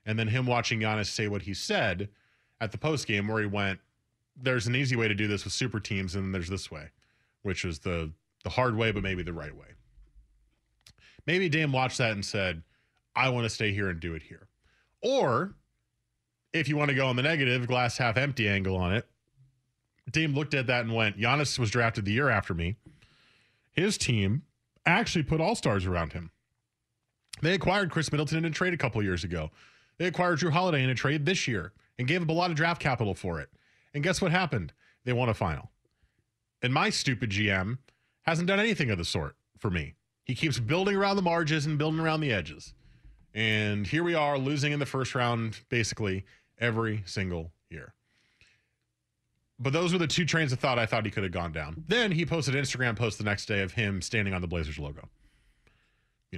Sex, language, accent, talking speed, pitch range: male, English, American, 210 wpm, 100-140 Hz